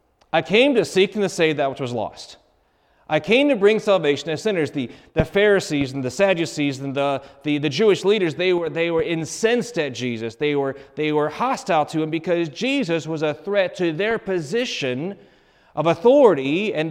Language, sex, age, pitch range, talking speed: English, male, 30-49, 150-205 Hz, 195 wpm